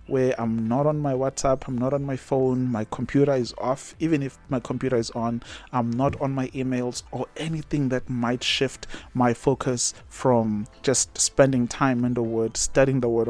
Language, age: English, 30-49